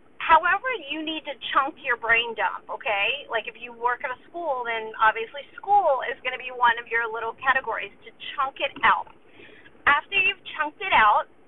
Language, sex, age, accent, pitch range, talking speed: English, female, 30-49, American, 240-350 Hz, 195 wpm